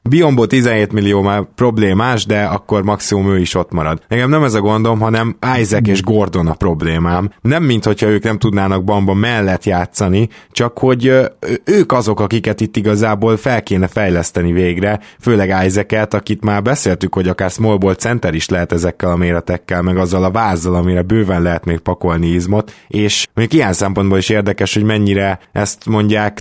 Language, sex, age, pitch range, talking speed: Hungarian, male, 20-39, 95-115 Hz, 175 wpm